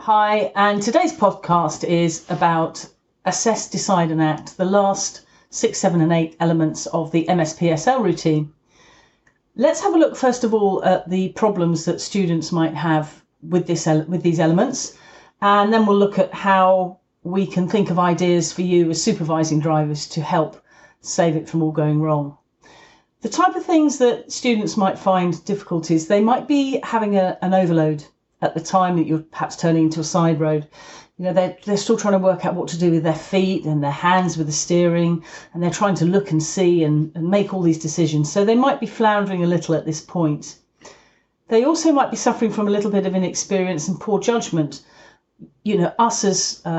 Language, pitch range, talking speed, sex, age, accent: English, 160-200 Hz, 195 wpm, female, 40-59, British